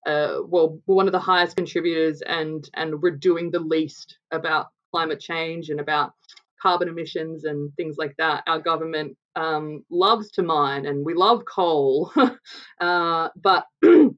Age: 20-39